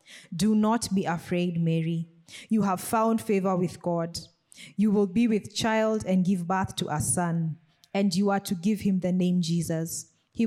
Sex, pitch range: female, 170-205 Hz